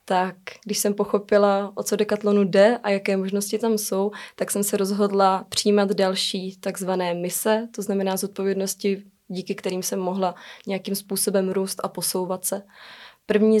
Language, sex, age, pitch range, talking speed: Czech, female, 20-39, 190-210 Hz, 155 wpm